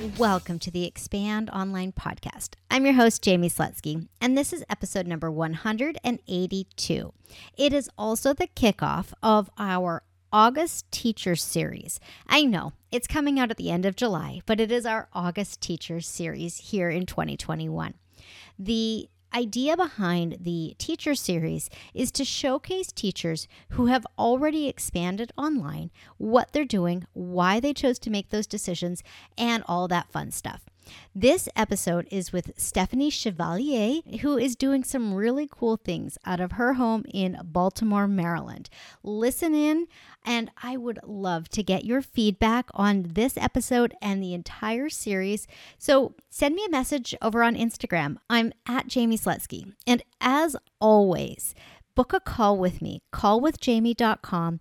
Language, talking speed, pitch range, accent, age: English, 145 wpm, 180-255 Hz, American, 40-59